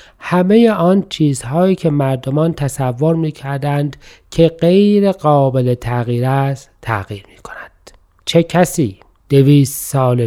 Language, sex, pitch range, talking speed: Persian, male, 130-165 Hz, 105 wpm